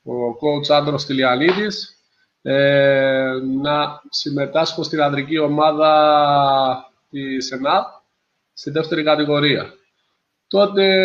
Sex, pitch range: male, 140-175 Hz